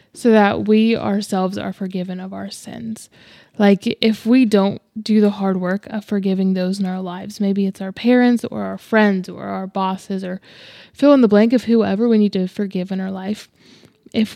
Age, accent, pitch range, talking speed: 20-39, American, 195-235 Hz, 200 wpm